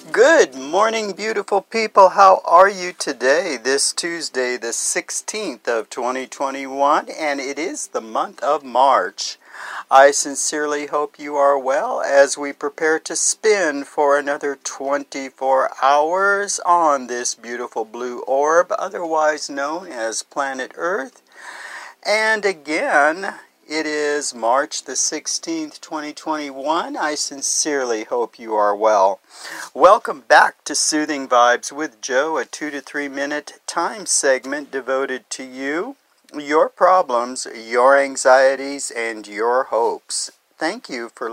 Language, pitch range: English, 135-185 Hz